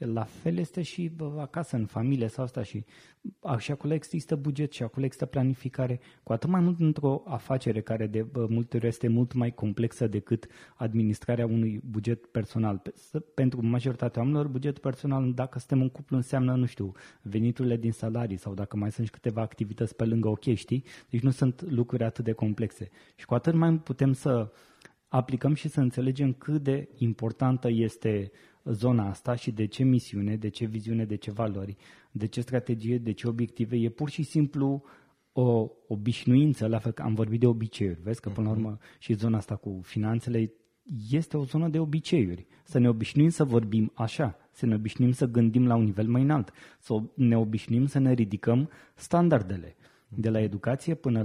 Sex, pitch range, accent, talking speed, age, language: male, 110-135 Hz, native, 185 wpm, 20-39, Romanian